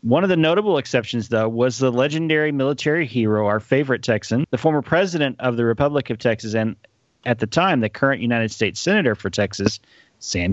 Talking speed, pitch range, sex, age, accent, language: 195 wpm, 120-160 Hz, male, 40-59, American, English